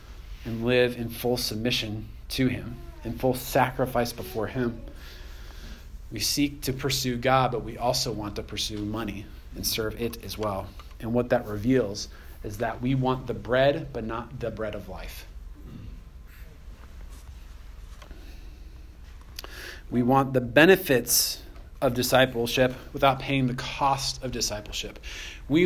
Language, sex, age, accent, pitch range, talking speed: English, male, 30-49, American, 100-150 Hz, 135 wpm